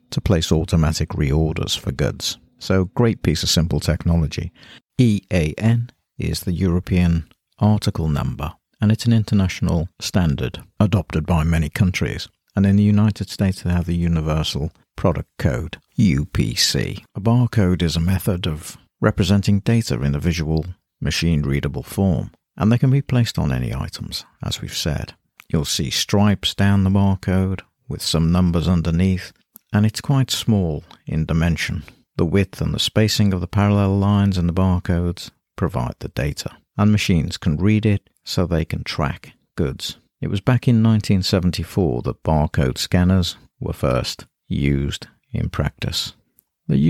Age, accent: 50-69, British